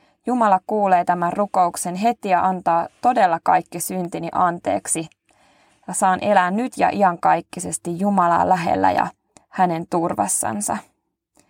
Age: 20-39